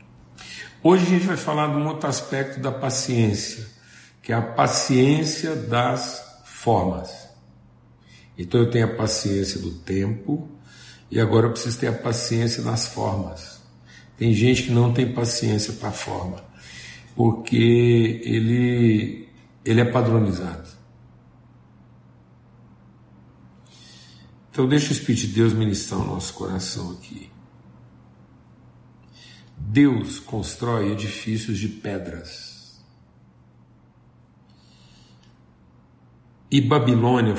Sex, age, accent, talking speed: male, 50-69, Brazilian, 105 wpm